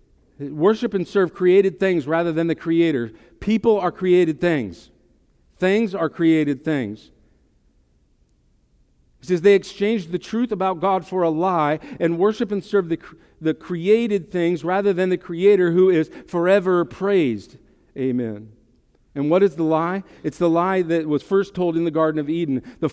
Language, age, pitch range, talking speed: English, 50-69, 125-195 Hz, 165 wpm